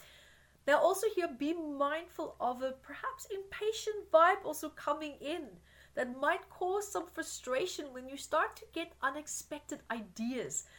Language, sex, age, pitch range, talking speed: English, female, 30-49, 255-330 Hz, 140 wpm